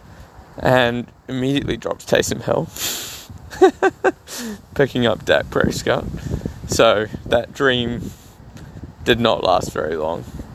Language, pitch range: English, 120-150 Hz